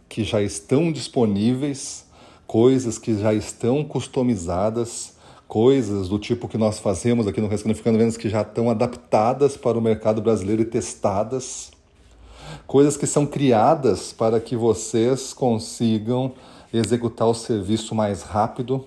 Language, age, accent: Portuguese, 40-59, Brazilian